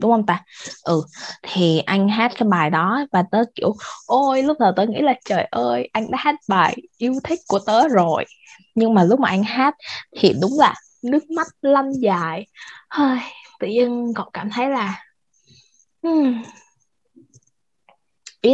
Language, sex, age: Vietnamese, female, 20-39